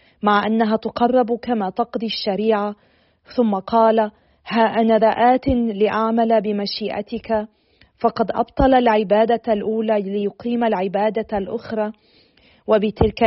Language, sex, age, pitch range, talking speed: Arabic, female, 40-59, 205-230 Hz, 90 wpm